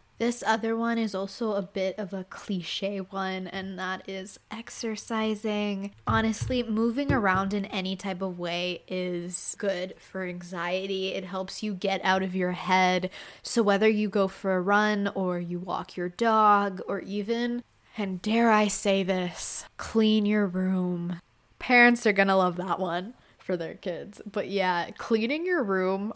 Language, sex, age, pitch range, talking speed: English, female, 10-29, 180-215 Hz, 165 wpm